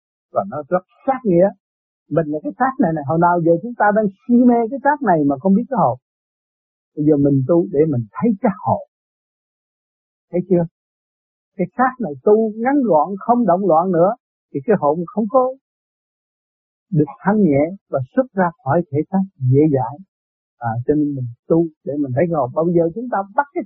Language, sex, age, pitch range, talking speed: Vietnamese, male, 60-79, 150-220 Hz, 205 wpm